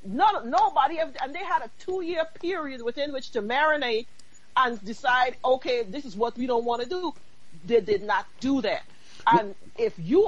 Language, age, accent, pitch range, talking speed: English, 40-59, American, 245-345 Hz, 175 wpm